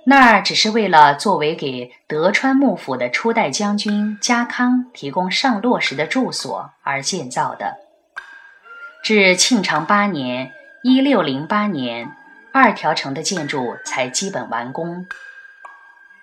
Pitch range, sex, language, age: 175-265 Hz, female, Chinese, 20-39